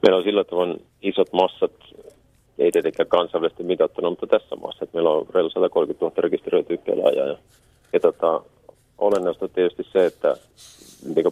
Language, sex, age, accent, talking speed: Finnish, male, 40-59, native, 145 wpm